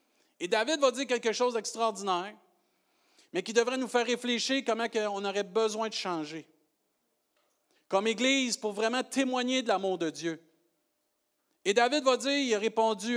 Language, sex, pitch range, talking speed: French, male, 150-230 Hz, 160 wpm